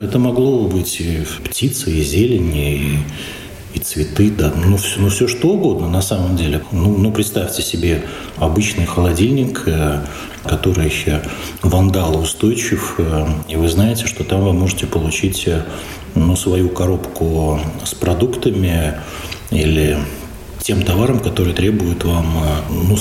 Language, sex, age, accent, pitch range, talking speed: Russian, male, 40-59, native, 80-100 Hz, 130 wpm